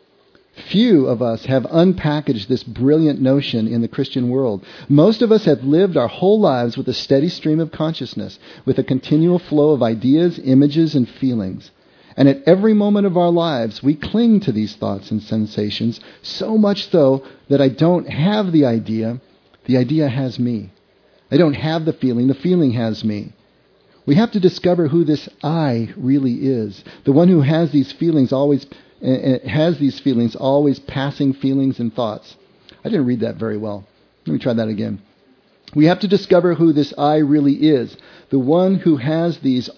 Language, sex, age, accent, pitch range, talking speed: English, male, 40-59, American, 125-170 Hz, 185 wpm